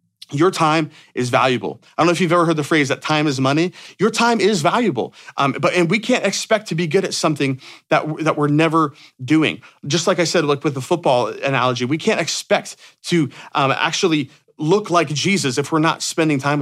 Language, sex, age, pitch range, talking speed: English, male, 30-49, 135-175 Hz, 215 wpm